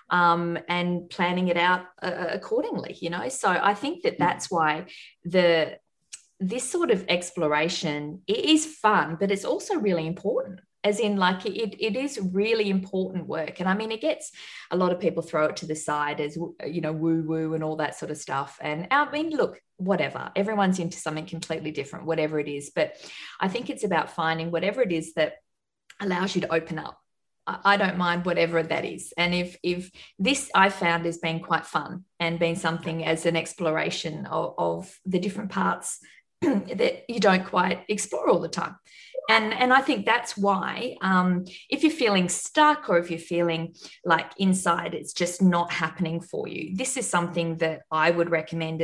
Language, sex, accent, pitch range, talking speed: English, female, Australian, 165-200 Hz, 190 wpm